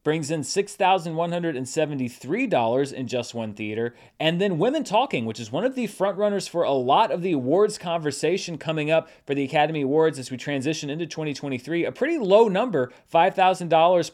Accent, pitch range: American, 130-185 Hz